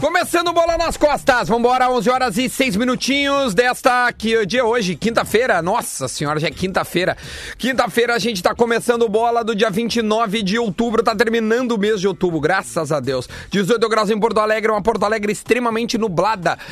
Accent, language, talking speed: Brazilian, Portuguese, 180 wpm